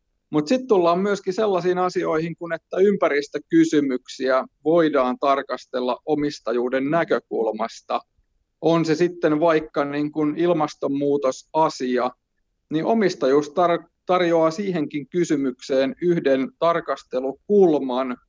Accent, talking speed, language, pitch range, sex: native, 80 wpm, Finnish, 135-170 Hz, male